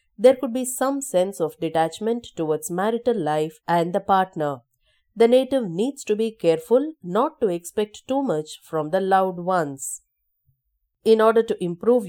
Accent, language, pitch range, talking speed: Indian, English, 165-230 Hz, 160 wpm